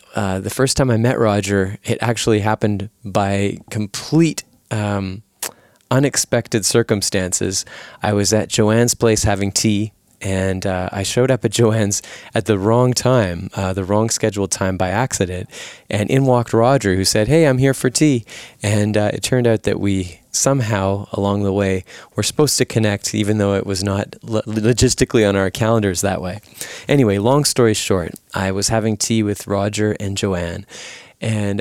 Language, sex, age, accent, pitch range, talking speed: English, male, 20-39, American, 100-115 Hz, 170 wpm